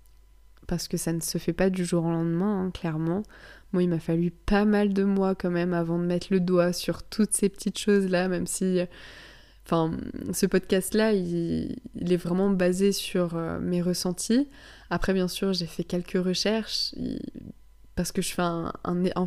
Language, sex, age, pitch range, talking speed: French, female, 20-39, 180-205 Hz, 170 wpm